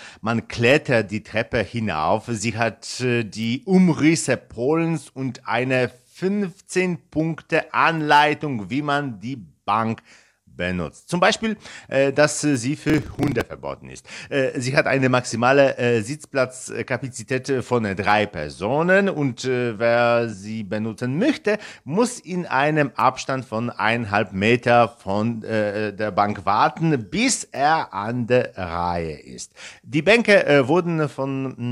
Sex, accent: male, German